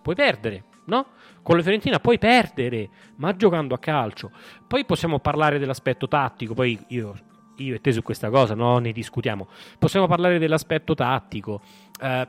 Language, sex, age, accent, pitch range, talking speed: Italian, male, 30-49, native, 125-170 Hz, 160 wpm